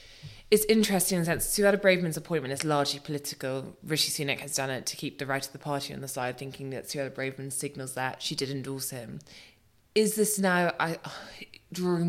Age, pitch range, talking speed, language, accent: 20-39, 135-160 Hz, 205 wpm, English, British